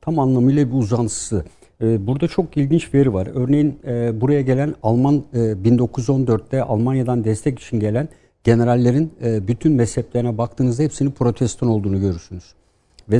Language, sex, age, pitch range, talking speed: Turkish, male, 60-79, 115-145 Hz, 140 wpm